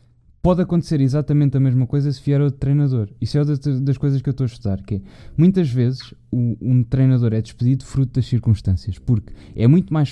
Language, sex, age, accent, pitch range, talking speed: Portuguese, male, 20-39, Portuguese, 115-150 Hz, 215 wpm